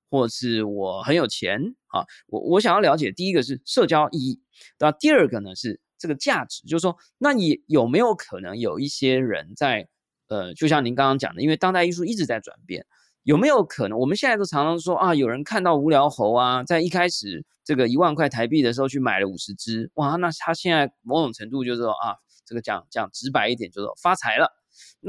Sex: male